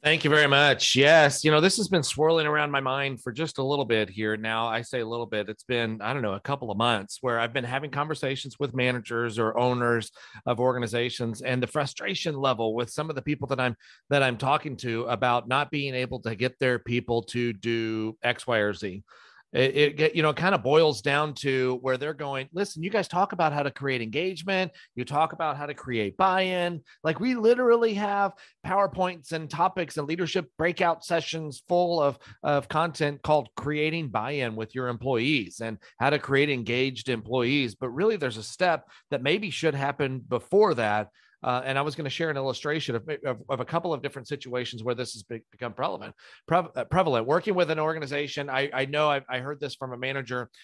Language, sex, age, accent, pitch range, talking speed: English, male, 40-59, American, 125-155 Hz, 215 wpm